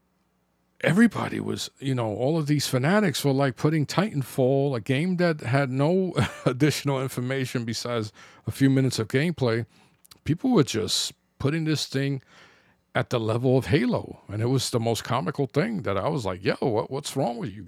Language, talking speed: English, 175 wpm